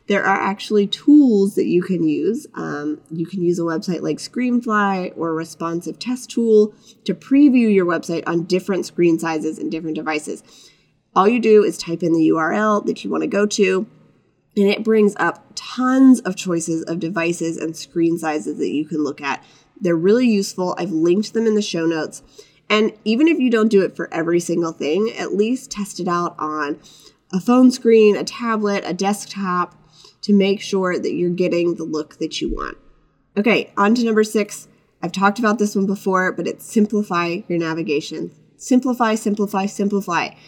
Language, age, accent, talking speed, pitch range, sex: English, 20-39, American, 185 wpm, 165-215 Hz, female